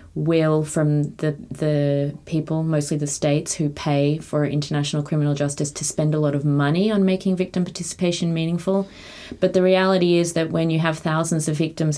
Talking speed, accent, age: 180 wpm, Australian, 30-49